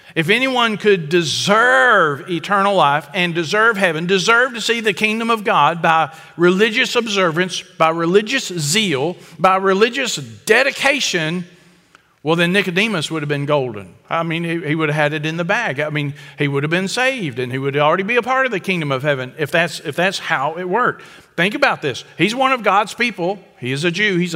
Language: English